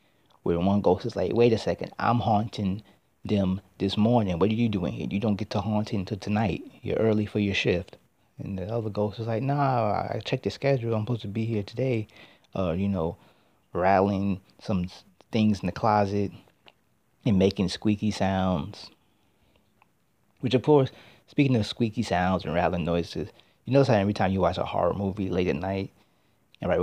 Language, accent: English, American